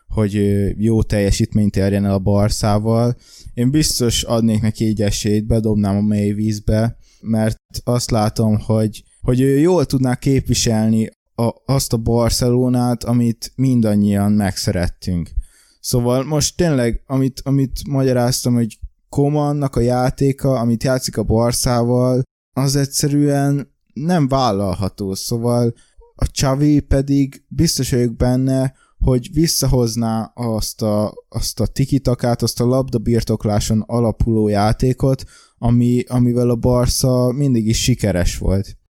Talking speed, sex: 120 wpm, male